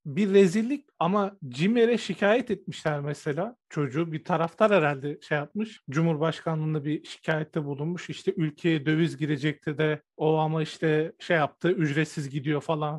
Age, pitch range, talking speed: 40-59, 160-200 Hz, 140 wpm